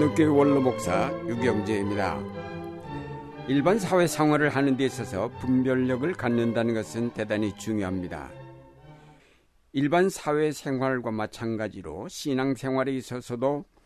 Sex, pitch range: male, 105-140 Hz